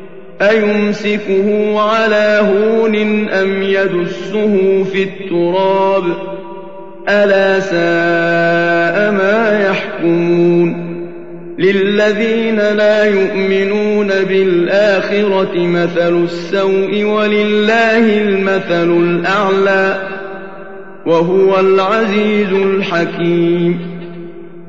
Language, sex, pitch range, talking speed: Arabic, male, 185-210 Hz, 55 wpm